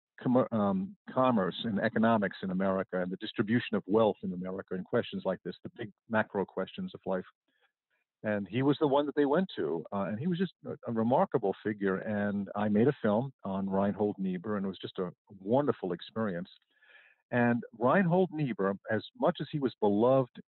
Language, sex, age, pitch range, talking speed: English, male, 50-69, 100-140 Hz, 190 wpm